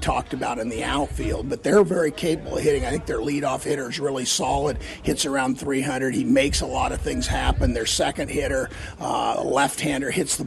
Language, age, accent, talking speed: English, 50-69, American, 205 wpm